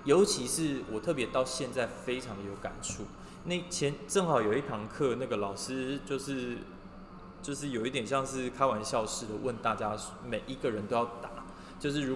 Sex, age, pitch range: male, 20-39, 105-130 Hz